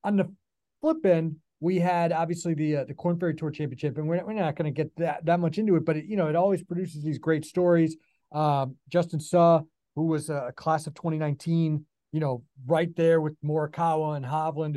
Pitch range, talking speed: 150-175 Hz, 220 wpm